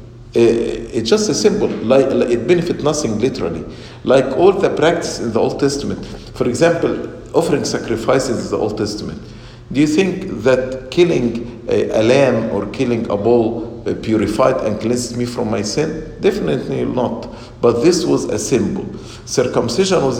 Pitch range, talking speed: 115-150 Hz, 160 wpm